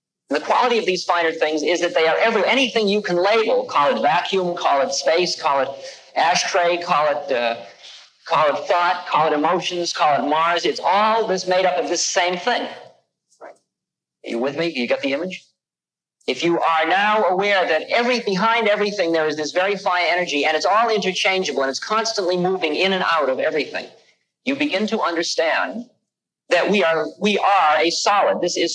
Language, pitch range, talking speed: English, 155-210 Hz, 195 wpm